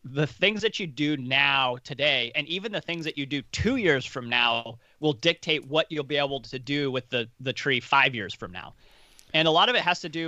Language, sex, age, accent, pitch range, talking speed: English, male, 30-49, American, 120-155 Hz, 245 wpm